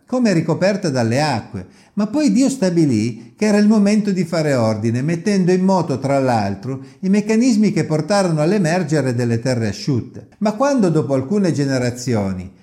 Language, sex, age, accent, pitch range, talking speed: Italian, male, 50-69, native, 130-195 Hz, 155 wpm